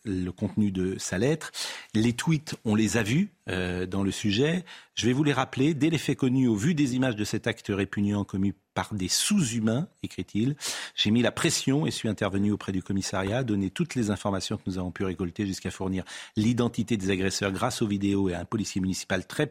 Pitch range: 95-130 Hz